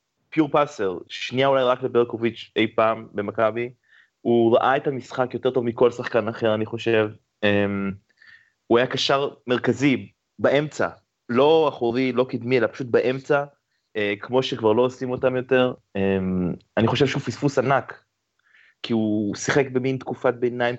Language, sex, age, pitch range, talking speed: Hebrew, male, 30-49, 105-130 Hz, 140 wpm